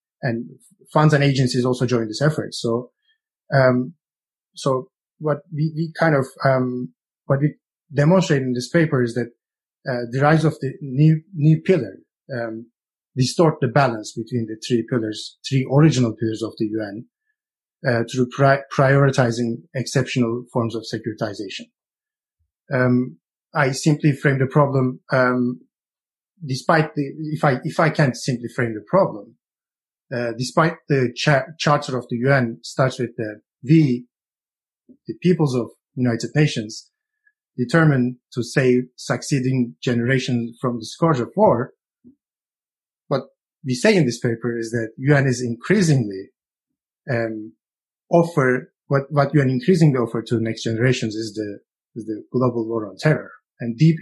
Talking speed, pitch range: 145 wpm, 120-150 Hz